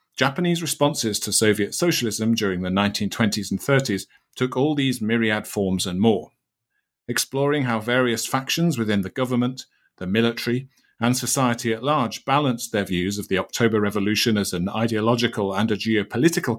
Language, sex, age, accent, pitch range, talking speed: English, male, 40-59, British, 110-130 Hz, 155 wpm